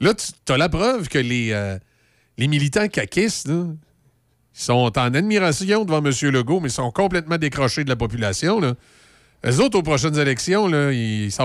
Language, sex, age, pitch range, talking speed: French, male, 40-59, 125-165 Hz, 150 wpm